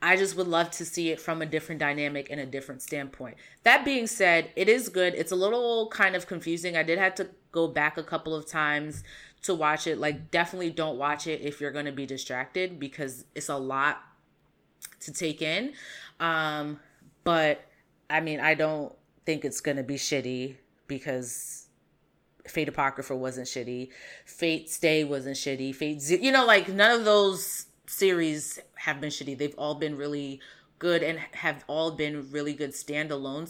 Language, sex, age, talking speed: English, female, 30-49, 175 wpm